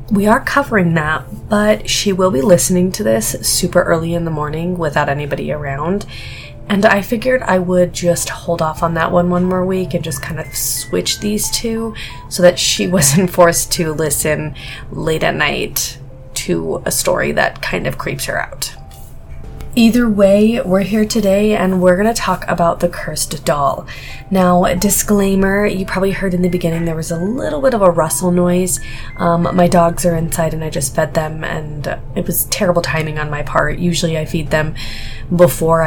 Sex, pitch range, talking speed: female, 155-185 Hz, 190 wpm